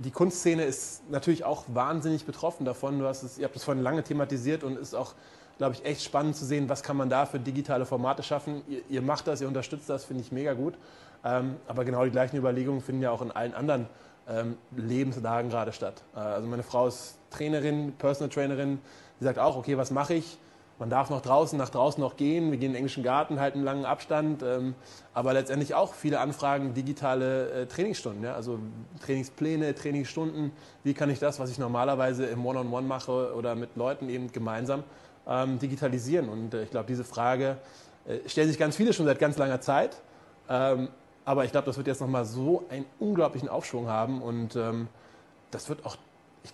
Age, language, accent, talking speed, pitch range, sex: 20-39, German, German, 200 wpm, 125-145 Hz, male